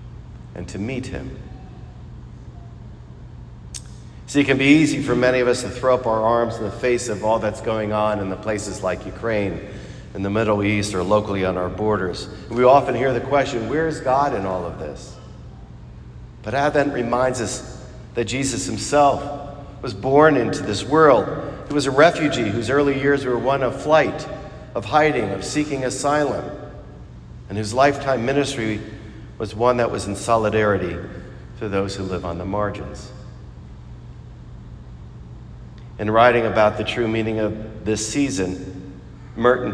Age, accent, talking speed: 40-59, American, 160 wpm